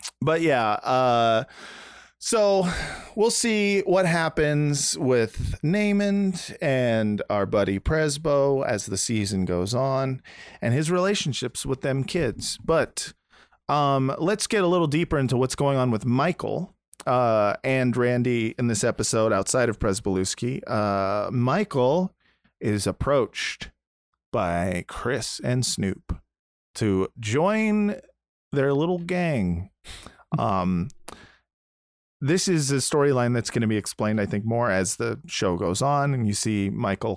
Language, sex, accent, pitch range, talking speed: English, male, American, 110-165 Hz, 130 wpm